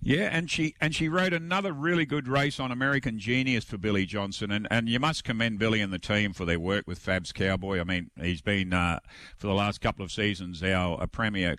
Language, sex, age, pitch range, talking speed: English, male, 50-69, 100-135 Hz, 235 wpm